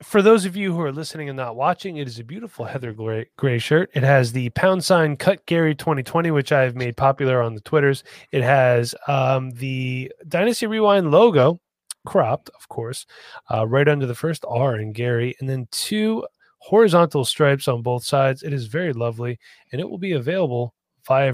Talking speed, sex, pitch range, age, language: 195 wpm, male, 130-165 Hz, 20-39, English